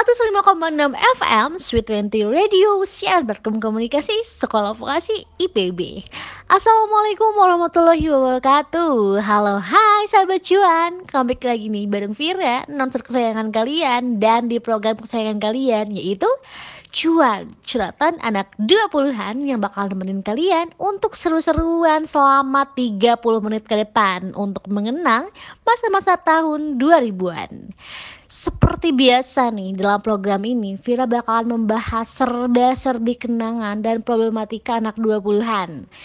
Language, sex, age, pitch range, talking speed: Indonesian, female, 20-39, 215-320 Hz, 115 wpm